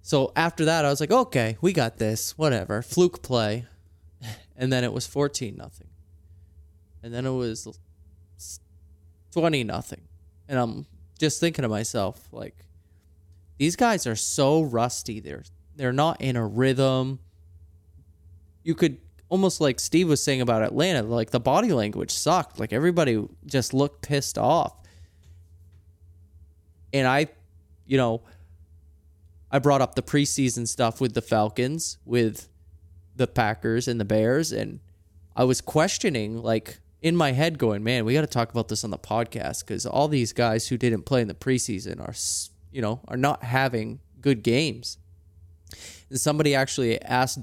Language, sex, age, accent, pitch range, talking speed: English, male, 20-39, American, 85-130 Hz, 155 wpm